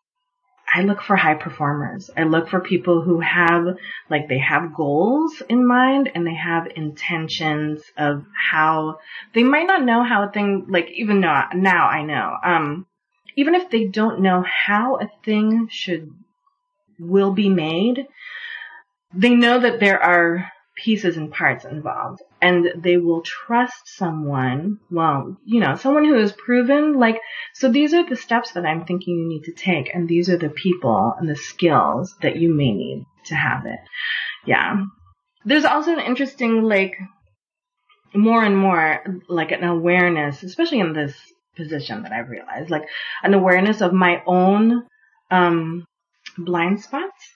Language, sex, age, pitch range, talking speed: English, female, 30-49, 170-240 Hz, 160 wpm